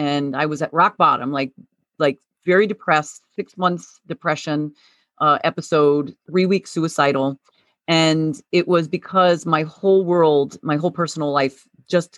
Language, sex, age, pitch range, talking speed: English, female, 40-59, 145-185 Hz, 150 wpm